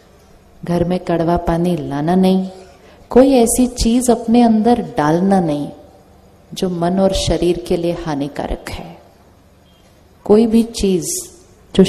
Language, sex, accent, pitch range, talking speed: Hindi, female, native, 155-190 Hz, 125 wpm